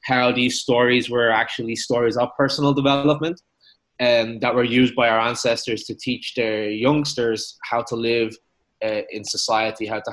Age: 20-39